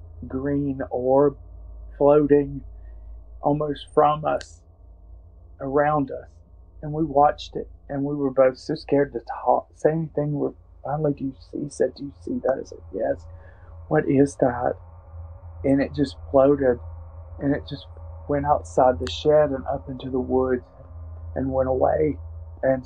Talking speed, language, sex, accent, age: 150 wpm, English, male, American, 40-59